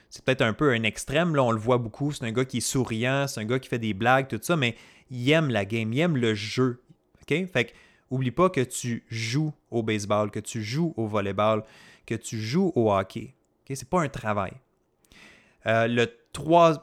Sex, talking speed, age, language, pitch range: male, 230 wpm, 30-49, French, 110-140 Hz